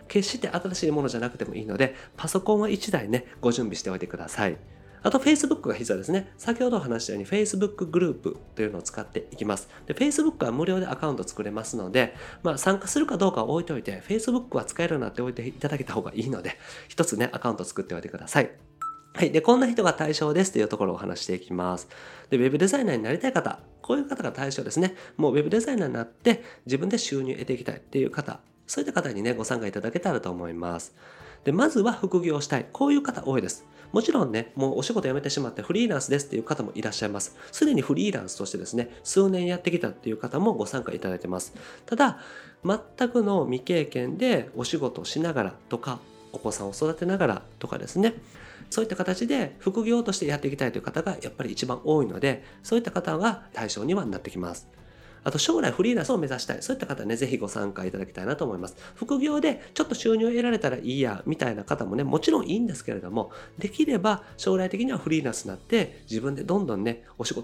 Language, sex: Japanese, male